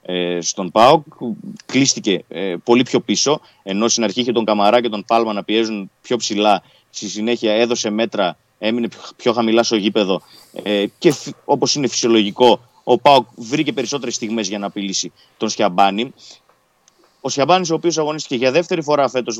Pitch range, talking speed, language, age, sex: 110-140 Hz, 160 wpm, Greek, 30-49, male